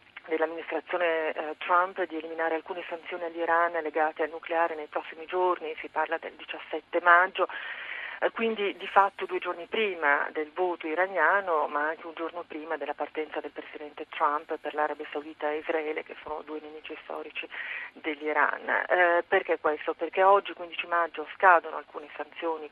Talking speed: 150 wpm